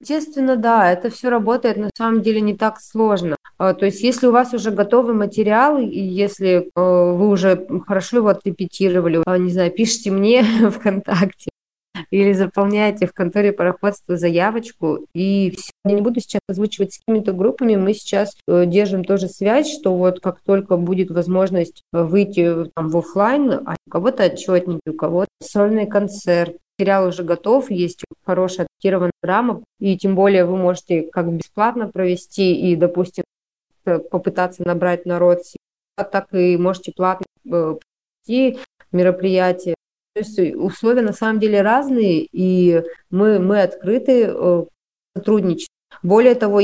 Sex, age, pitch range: female, 20-39, 180-215 Hz